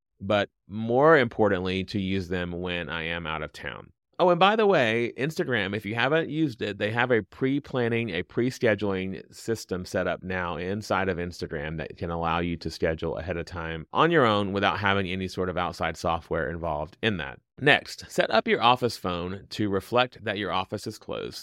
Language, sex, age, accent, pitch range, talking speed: English, male, 30-49, American, 90-125 Hz, 200 wpm